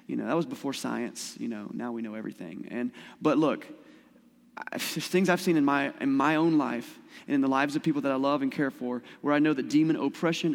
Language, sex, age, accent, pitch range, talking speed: English, male, 30-49, American, 150-245 Hz, 245 wpm